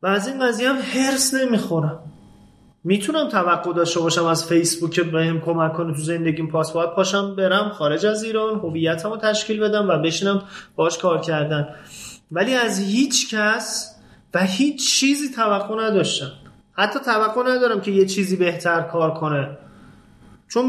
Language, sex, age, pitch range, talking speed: Persian, male, 30-49, 165-215 Hz, 150 wpm